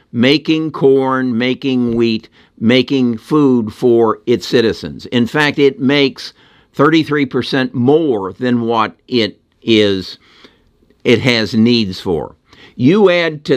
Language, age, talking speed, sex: English, 60-79, 115 wpm, male